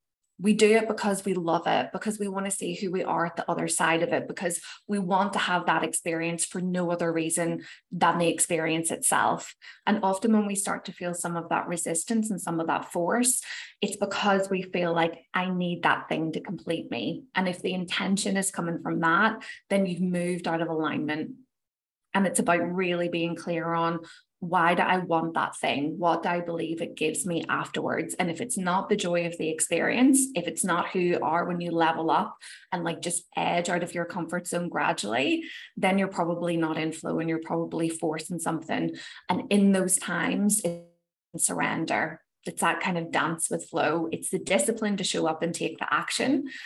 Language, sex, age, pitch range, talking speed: English, female, 20-39, 165-190 Hz, 210 wpm